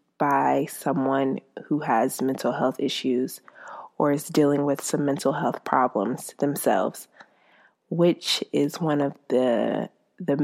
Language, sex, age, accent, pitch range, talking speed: English, female, 20-39, American, 135-150 Hz, 125 wpm